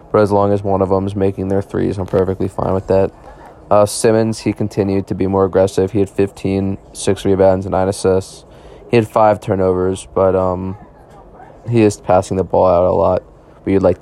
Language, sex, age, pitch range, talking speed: English, male, 20-39, 95-105 Hz, 205 wpm